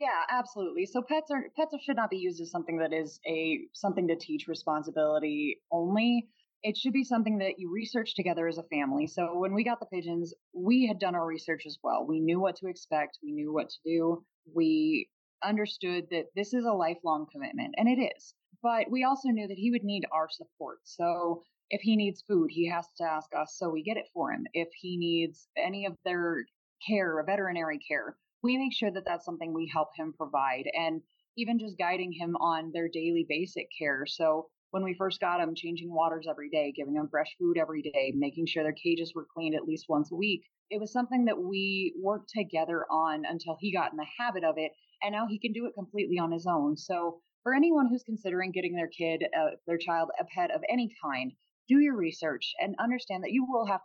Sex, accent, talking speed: female, American, 220 wpm